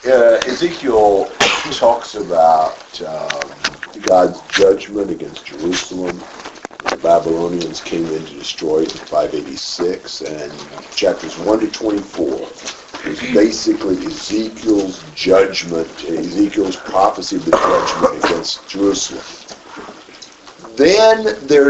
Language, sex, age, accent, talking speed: English, male, 50-69, American, 100 wpm